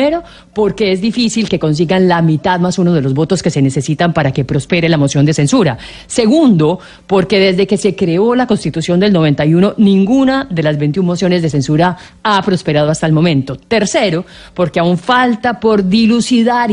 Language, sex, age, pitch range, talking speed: Spanish, female, 30-49, 170-225 Hz, 185 wpm